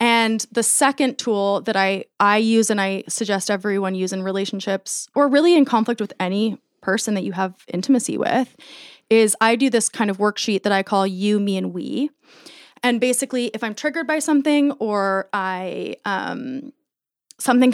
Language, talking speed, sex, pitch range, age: English, 175 wpm, female, 195-245 Hz, 20-39